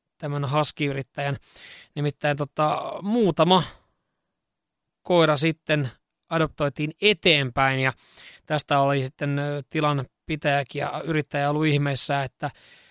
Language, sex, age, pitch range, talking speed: Finnish, male, 20-39, 135-160 Hz, 85 wpm